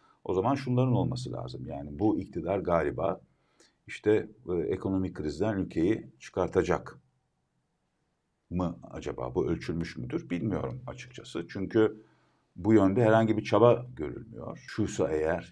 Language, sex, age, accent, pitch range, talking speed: Turkish, male, 50-69, native, 85-115 Hz, 120 wpm